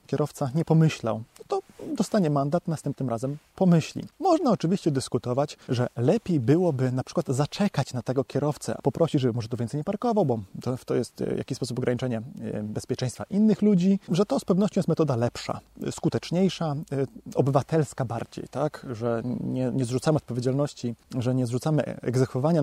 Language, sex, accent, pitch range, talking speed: Polish, male, native, 130-170 Hz, 150 wpm